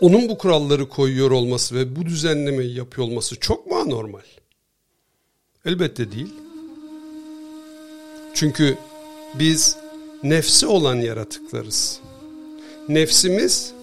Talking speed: 90 wpm